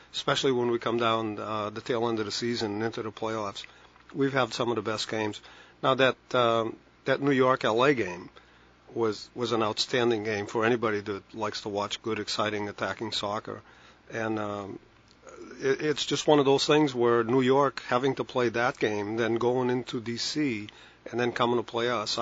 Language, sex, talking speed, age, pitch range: English, male, 195 wpm, 40-59, 110-130 Hz